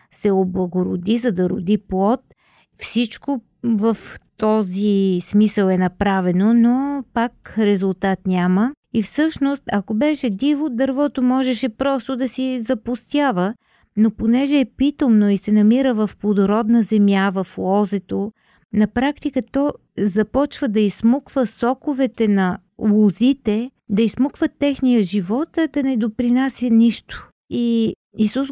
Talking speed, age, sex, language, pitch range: 120 wpm, 40-59, female, Bulgarian, 195-255 Hz